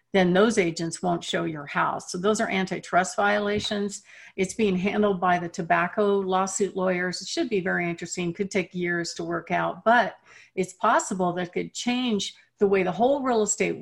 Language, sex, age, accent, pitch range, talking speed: English, female, 50-69, American, 185-230 Hz, 185 wpm